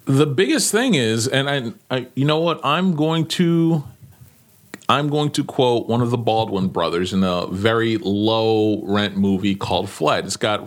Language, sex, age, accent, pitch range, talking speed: English, male, 40-59, American, 110-160 Hz, 175 wpm